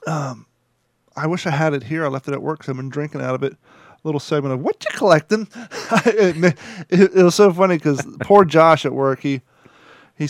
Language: English